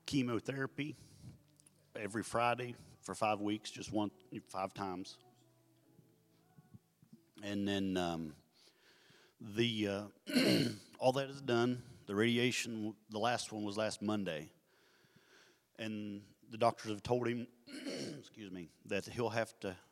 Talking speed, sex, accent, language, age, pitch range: 120 wpm, male, American, English, 40-59, 100-120 Hz